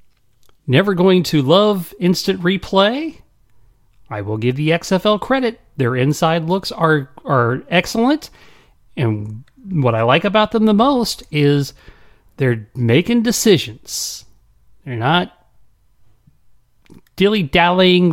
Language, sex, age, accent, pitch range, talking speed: English, male, 40-59, American, 105-170 Hz, 110 wpm